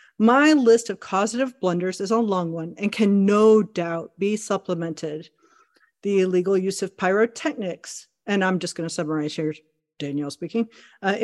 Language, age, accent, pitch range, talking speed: English, 40-59, American, 185-240 Hz, 155 wpm